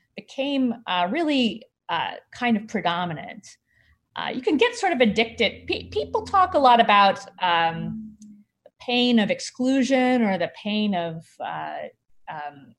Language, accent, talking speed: English, American, 145 wpm